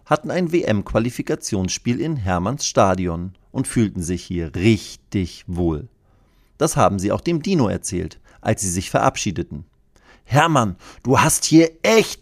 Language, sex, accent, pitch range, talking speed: German, male, German, 100-150 Hz, 135 wpm